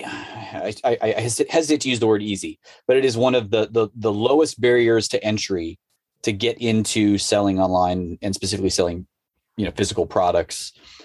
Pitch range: 100-125 Hz